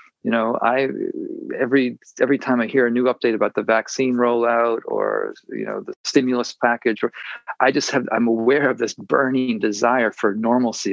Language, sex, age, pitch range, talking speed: English, male, 40-59, 110-145 Hz, 175 wpm